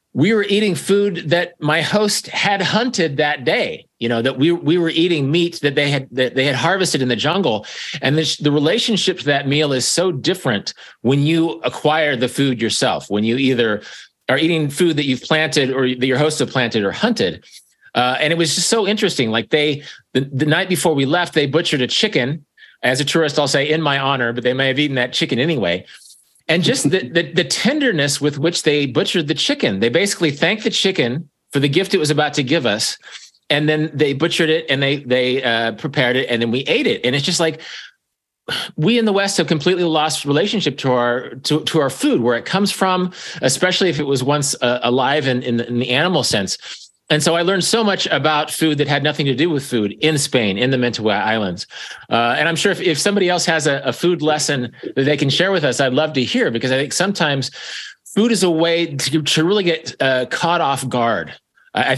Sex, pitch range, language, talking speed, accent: male, 130-170 Hz, English, 230 wpm, American